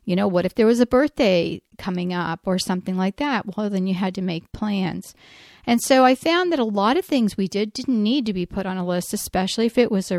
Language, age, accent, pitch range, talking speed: English, 40-59, American, 185-225 Hz, 265 wpm